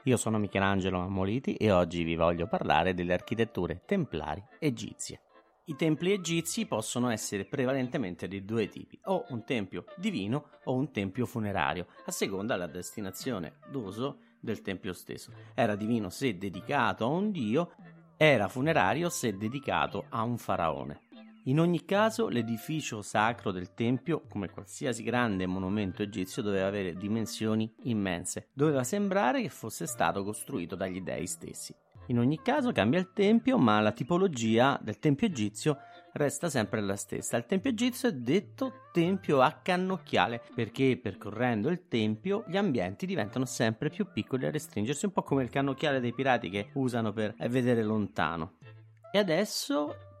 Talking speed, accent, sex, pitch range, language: 150 wpm, native, male, 105-160 Hz, Italian